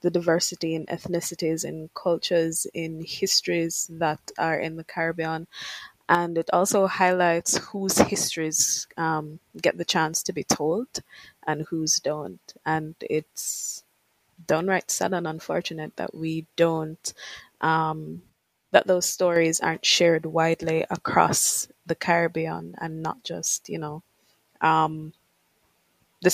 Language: English